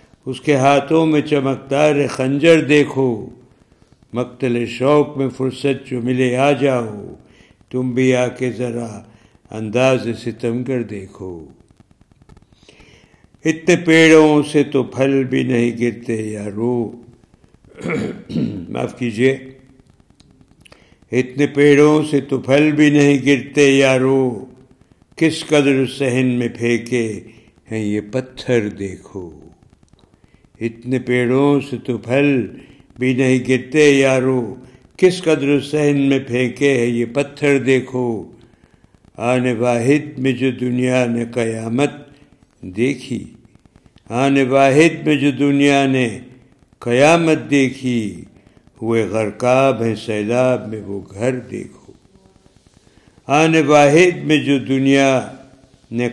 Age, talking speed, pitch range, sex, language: 60-79, 110 wpm, 120-140 Hz, male, Urdu